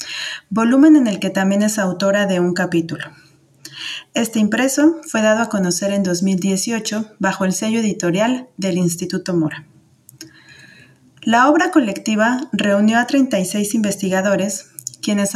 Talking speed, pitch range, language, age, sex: 130 wpm, 185-220 Hz, Spanish, 30-49, female